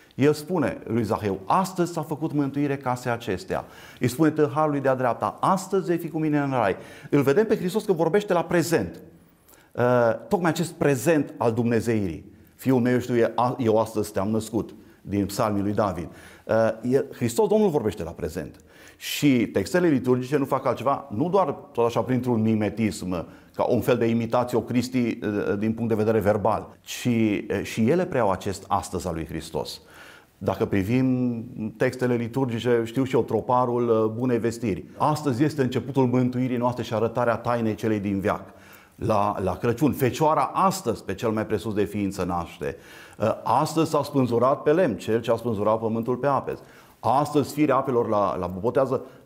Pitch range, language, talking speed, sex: 110-145 Hz, Romanian, 165 wpm, male